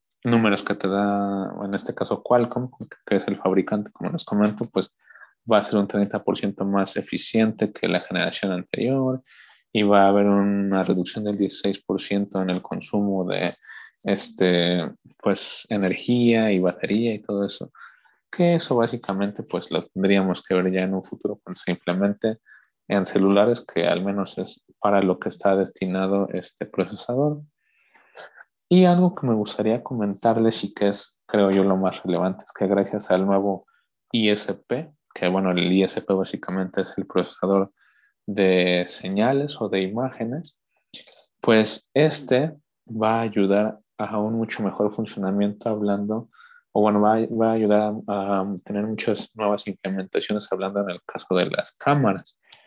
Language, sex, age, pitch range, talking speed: Spanish, male, 20-39, 95-115 Hz, 155 wpm